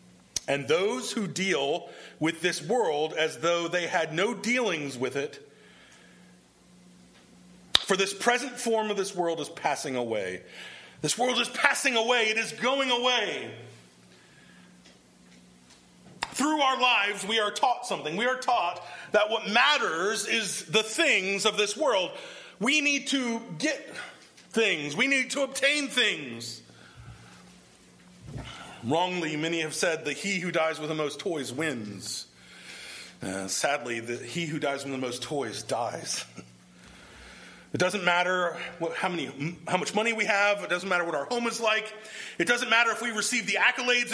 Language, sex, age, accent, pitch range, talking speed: English, male, 40-59, American, 150-240 Hz, 150 wpm